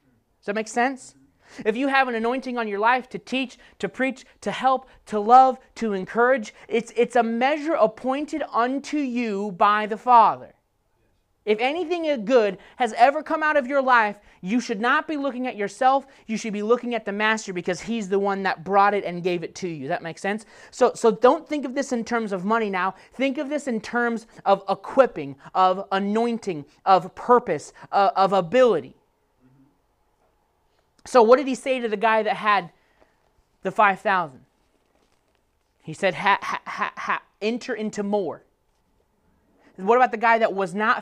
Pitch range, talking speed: 195-250 Hz, 185 wpm